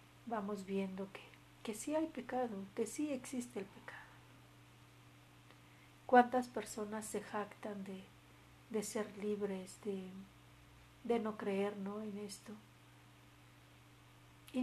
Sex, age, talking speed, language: female, 50-69, 115 wpm, Spanish